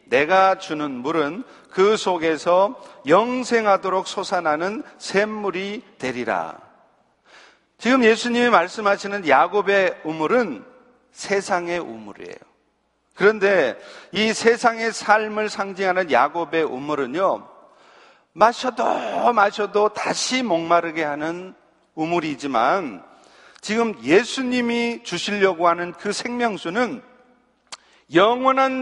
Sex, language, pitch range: male, Korean, 170-225 Hz